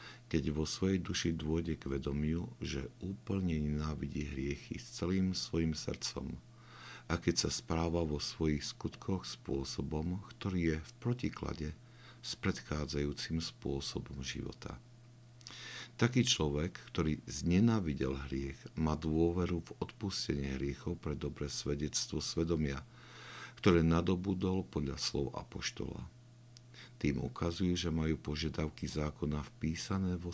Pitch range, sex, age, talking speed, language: 70-100 Hz, male, 60-79, 115 wpm, Slovak